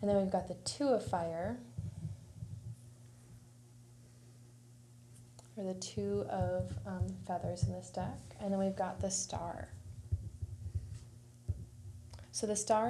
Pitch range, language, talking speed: 120-195 Hz, English, 120 wpm